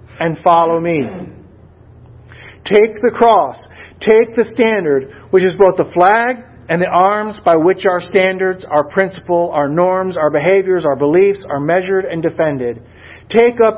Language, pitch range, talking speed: English, 145-190 Hz, 150 wpm